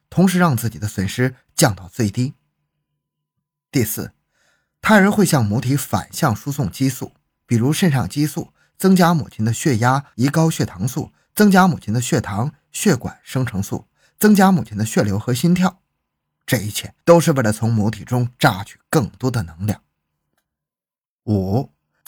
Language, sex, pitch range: Chinese, male, 105-155 Hz